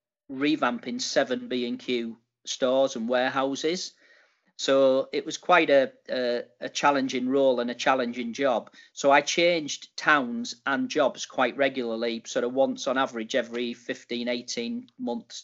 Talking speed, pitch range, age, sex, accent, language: 150 wpm, 125-150 Hz, 40-59, male, British, English